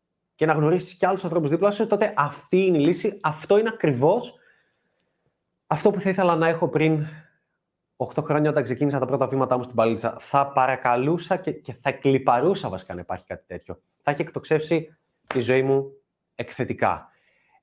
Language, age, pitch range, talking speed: Greek, 20-39, 130-175 Hz, 175 wpm